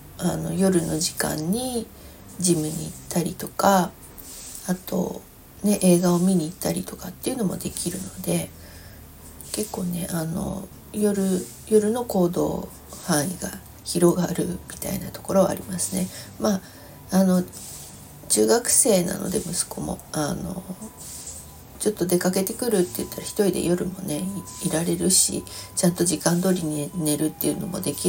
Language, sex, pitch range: Japanese, female, 165-195 Hz